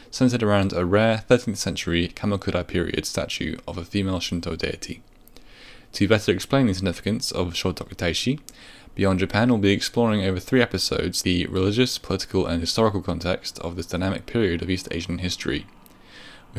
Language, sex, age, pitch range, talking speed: English, male, 10-29, 90-115 Hz, 160 wpm